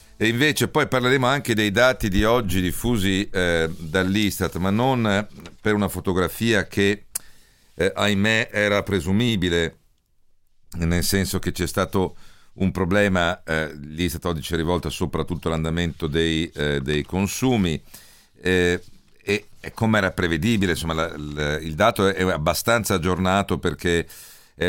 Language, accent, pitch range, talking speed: Italian, native, 85-100 Hz, 140 wpm